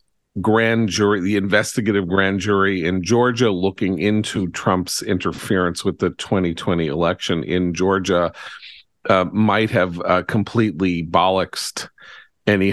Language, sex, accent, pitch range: English, male, American, 90-110 Hz